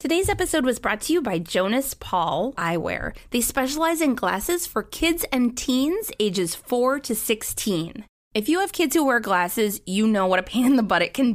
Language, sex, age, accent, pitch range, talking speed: English, female, 20-39, American, 200-275 Hz, 205 wpm